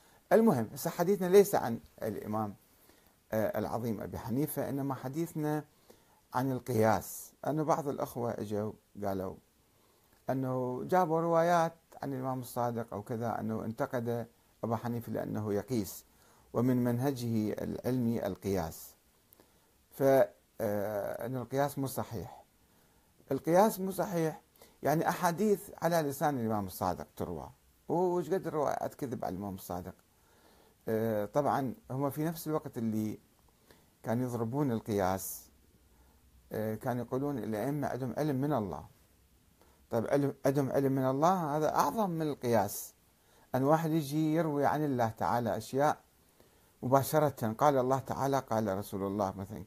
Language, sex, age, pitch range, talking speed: Arabic, male, 50-69, 105-145 Hz, 120 wpm